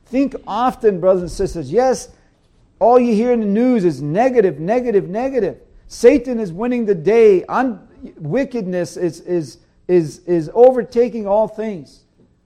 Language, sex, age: English, male, 50-69